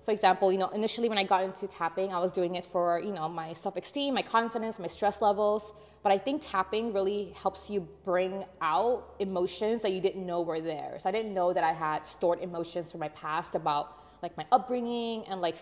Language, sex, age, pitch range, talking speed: English, female, 20-39, 180-215 Hz, 225 wpm